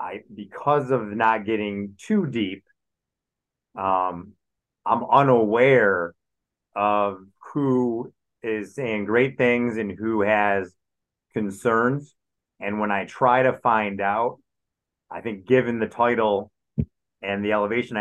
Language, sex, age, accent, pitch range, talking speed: English, male, 30-49, American, 100-120 Hz, 115 wpm